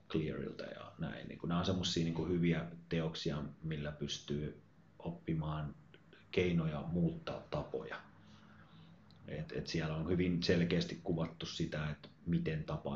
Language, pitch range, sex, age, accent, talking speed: Finnish, 75-90 Hz, male, 30-49, native, 110 wpm